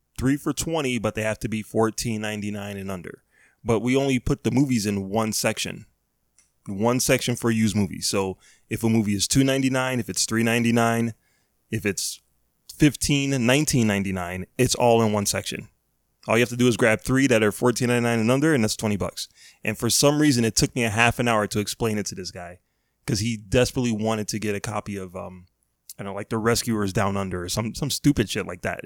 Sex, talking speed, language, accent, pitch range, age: male, 235 wpm, English, American, 105-125 Hz, 20-39